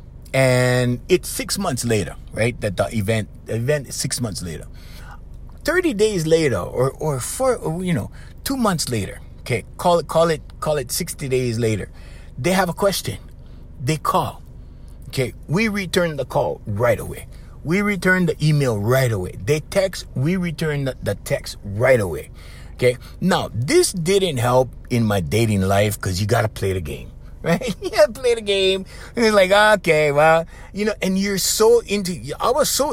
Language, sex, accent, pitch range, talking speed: English, male, American, 120-185 Hz, 180 wpm